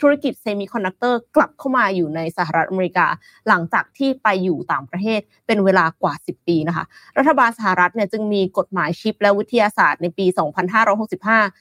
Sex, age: female, 20-39